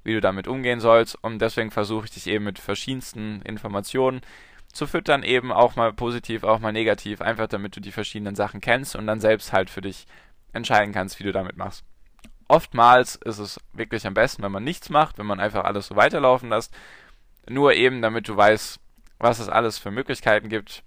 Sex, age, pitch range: male, 10-29, 100-120 Hz